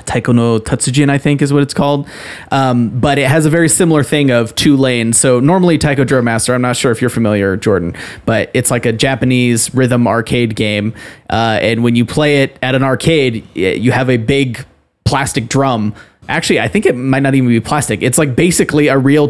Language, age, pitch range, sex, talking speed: English, 20-39, 115-140 Hz, male, 215 wpm